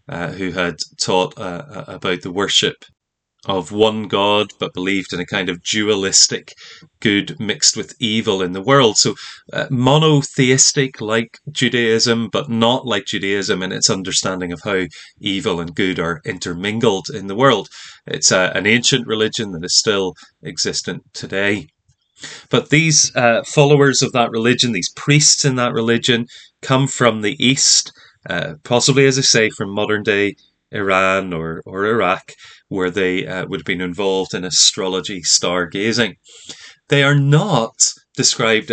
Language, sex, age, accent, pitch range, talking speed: English, male, 30-49, British, 100-135 Hz, 155 wpm